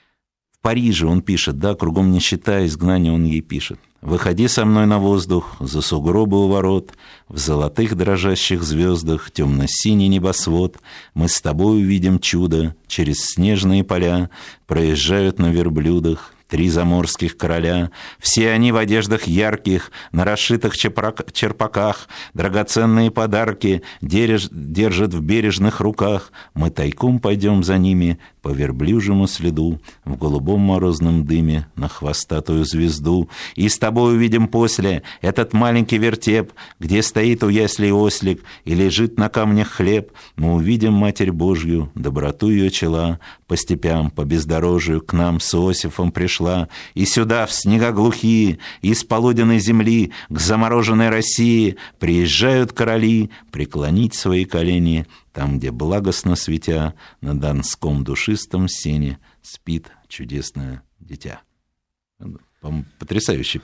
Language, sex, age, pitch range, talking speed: Russian, male, 50-69, 80-105 Hz, 125 wpm